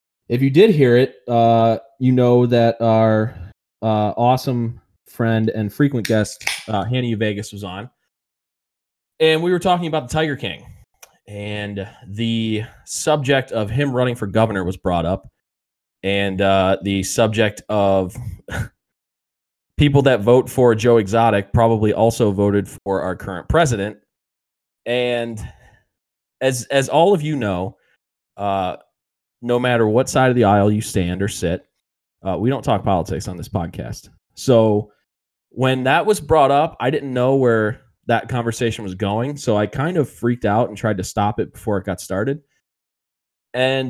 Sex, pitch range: male, 100-125 Hz